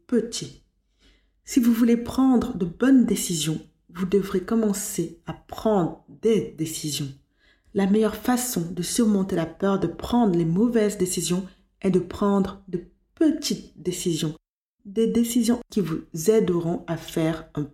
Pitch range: 165-210 Hz